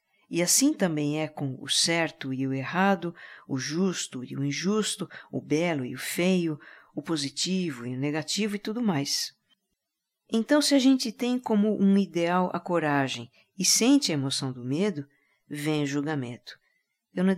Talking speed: 165 wpm